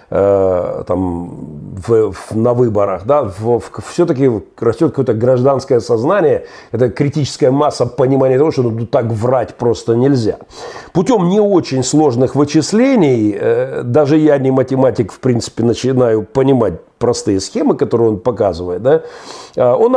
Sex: male